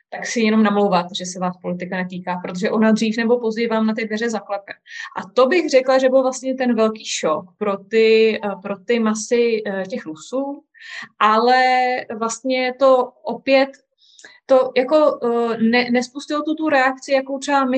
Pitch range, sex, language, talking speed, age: 200-240 Hz, female, Slovak, 170 wpm, 20-39